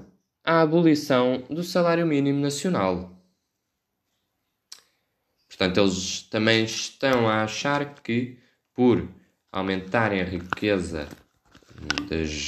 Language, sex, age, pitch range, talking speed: Portuguese, male, 20-39, 90-130 Hz, 85 wpm